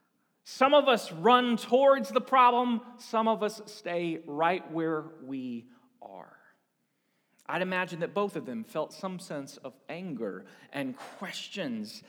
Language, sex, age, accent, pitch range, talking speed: English, male, 40-59, American, 190-265 Hz, 140 wpm